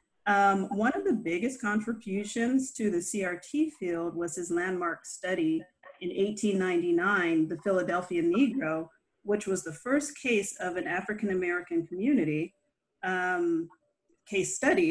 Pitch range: 175-245 Hz